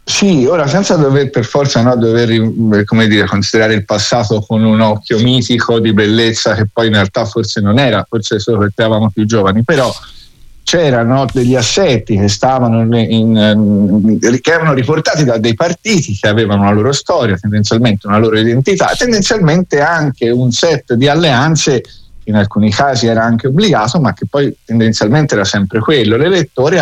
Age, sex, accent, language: 50-69, male, native, Italian